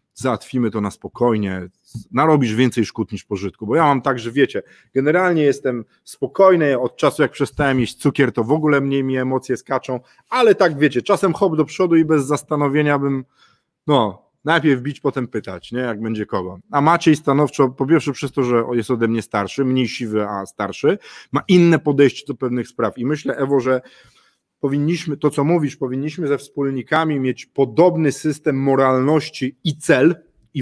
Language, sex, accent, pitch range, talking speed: Polish, male, native, 120-145 Hz, 180 wpm